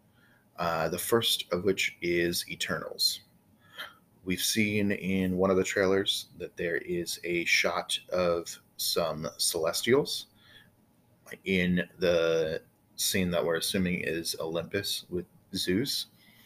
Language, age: English, 30-49